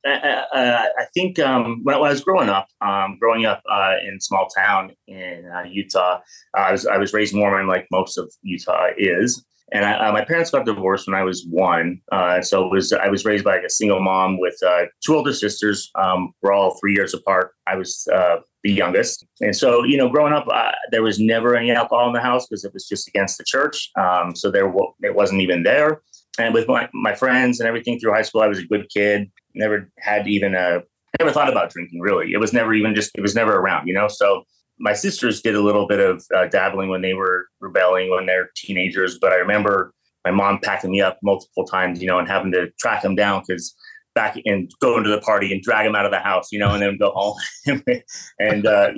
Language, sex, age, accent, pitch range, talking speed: English, male, 30-49, American, 95-115 Hz, 240 wpm